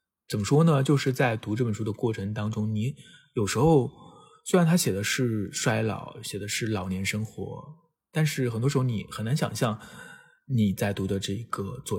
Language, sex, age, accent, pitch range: Chinese, male, 20-39, native, 100-140 Hz